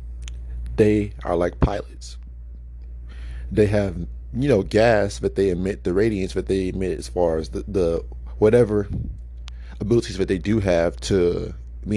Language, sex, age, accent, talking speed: English, male, 30-49, American, 150 wpm